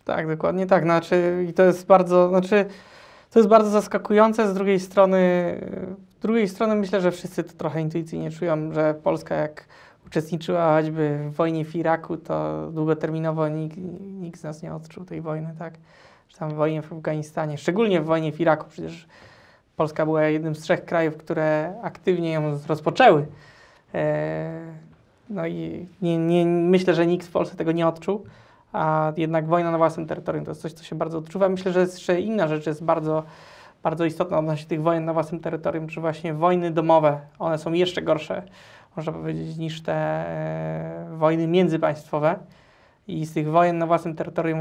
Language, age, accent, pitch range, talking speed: Polish, 20-39, native, 155-180 Hz, 170 wpm